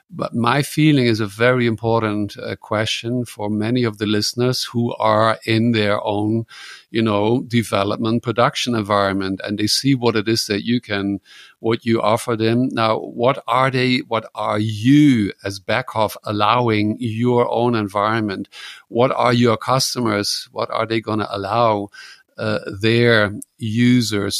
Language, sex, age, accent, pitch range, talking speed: English, male, 50-69, German, 105-120 Hz, 155 wpm